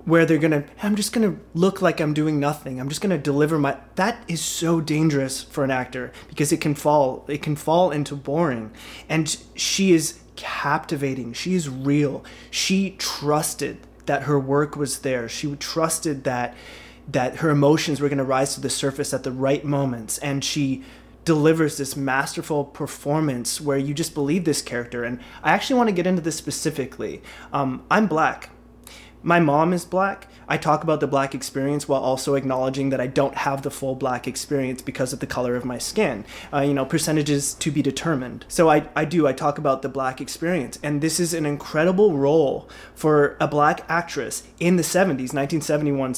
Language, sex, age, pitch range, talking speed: English, male, 20-39, 135-160 Hz, 195 wpm